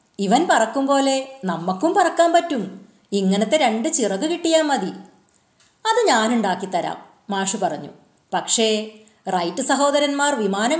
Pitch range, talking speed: 200-275 Hz, 105 wpm